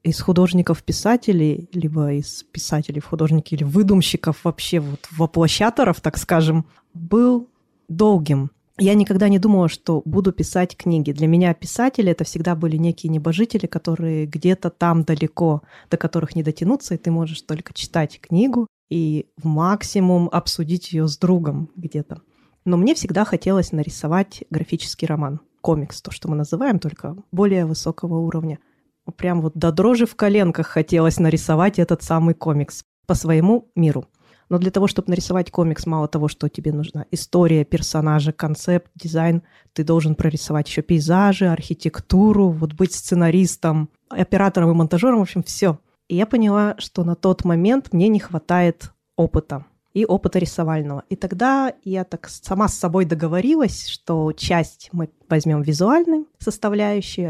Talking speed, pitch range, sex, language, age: 150 wpm, 160-190 Hz, female, Russian, 20-39